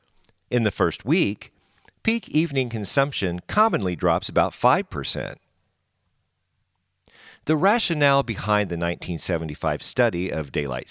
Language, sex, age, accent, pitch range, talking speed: English, male, 50-69, American, 85-130 Hz, 105 wpm